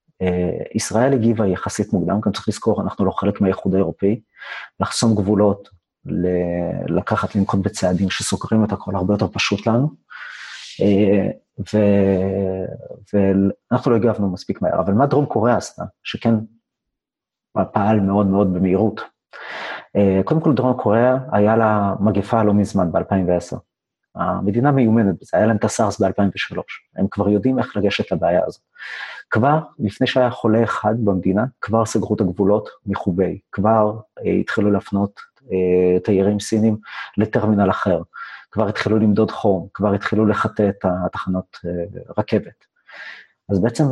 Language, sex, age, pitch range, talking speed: Hebrew, male, 30-49, 95-115 Hz, 140 wpm